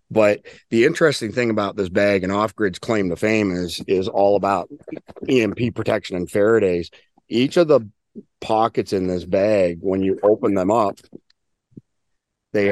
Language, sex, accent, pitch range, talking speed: English, male, American, 95-110 Hz, 155 wpm